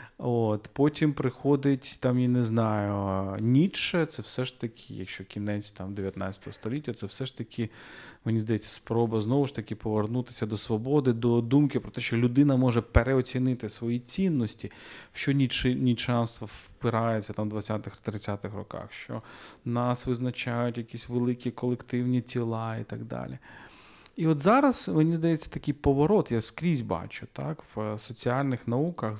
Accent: native